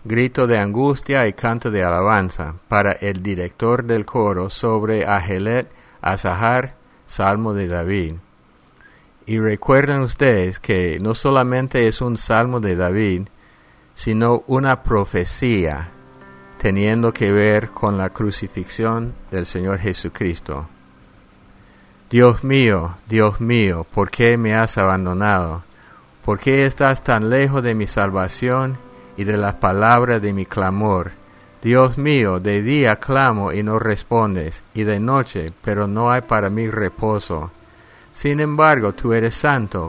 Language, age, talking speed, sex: English, 50-69, 130 wpm, male